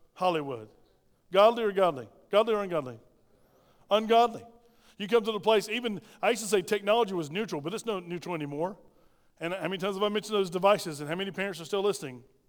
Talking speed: 200 wpm